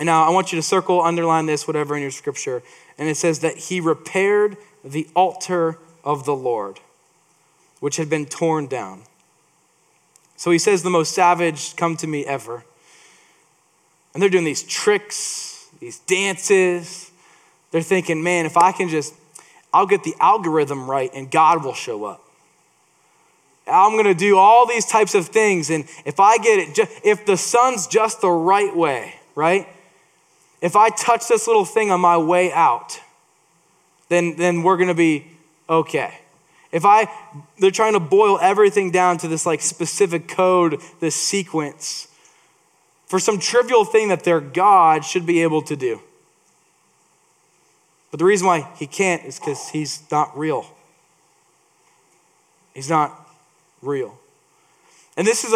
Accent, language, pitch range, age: American, English, 160-220 Hz, 10-29